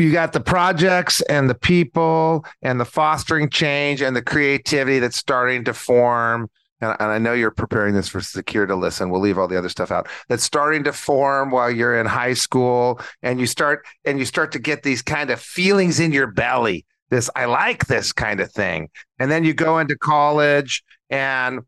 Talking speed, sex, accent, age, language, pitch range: 200 wpm, male, American, 40-59, English, 130-165 Hz